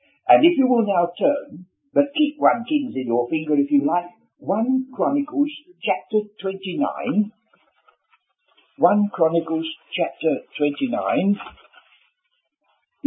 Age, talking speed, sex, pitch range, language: 60-79, 110 wpm, male, 165-265 Hz, English